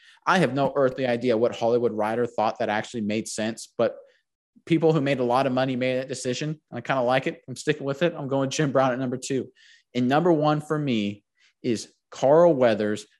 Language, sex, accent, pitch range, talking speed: English, male, American, 125-160 Hz, 220 wpm